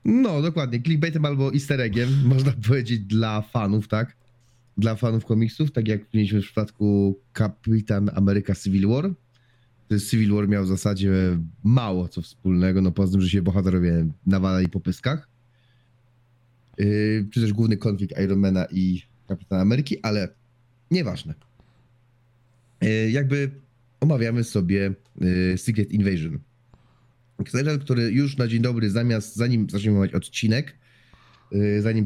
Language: Polish